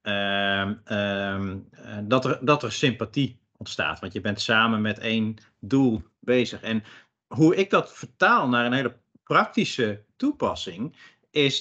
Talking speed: 125 wpm